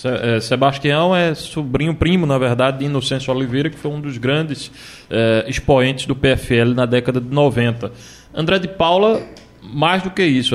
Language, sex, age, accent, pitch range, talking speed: Portuguese, male, 20-39, Brazilian, 125-155 Hz, 160 wpm